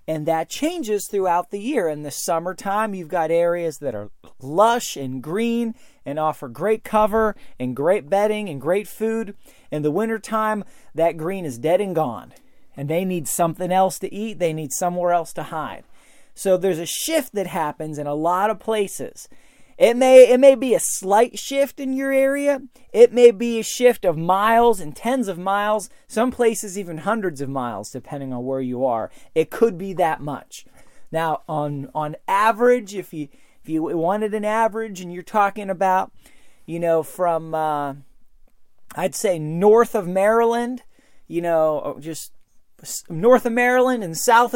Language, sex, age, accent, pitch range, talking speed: English, male, 30-49, American, 160-225 Hz, 175 wpm